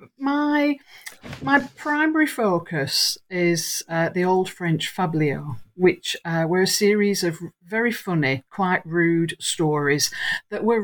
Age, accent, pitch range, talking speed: 50-69, British, 155-195 Hz, 125 wpm